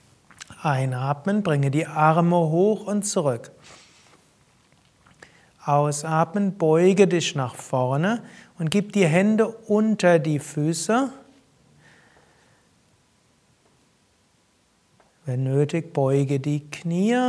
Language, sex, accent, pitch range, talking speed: German, male, German, 150-195 Hz, 85 wpm